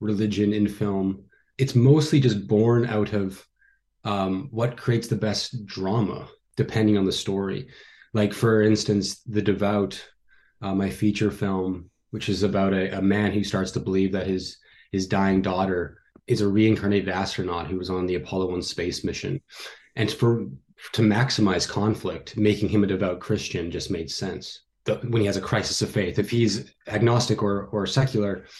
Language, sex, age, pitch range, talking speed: English, male, 20-39, 95-110 Hz, 170 wpm